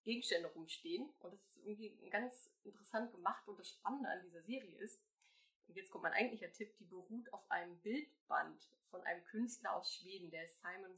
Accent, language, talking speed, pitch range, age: German, German, 185 wpm, 175-235 Hz, 20-39